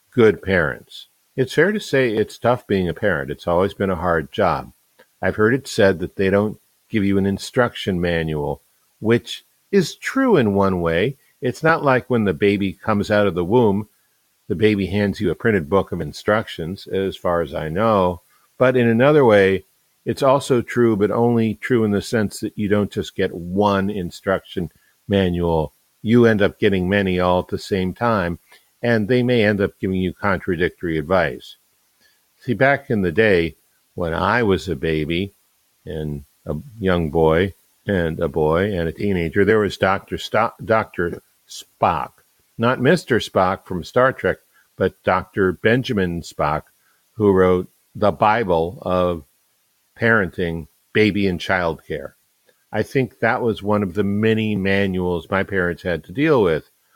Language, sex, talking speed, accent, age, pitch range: English, male, 170 wpm, American, 50-69, 90-115 Hz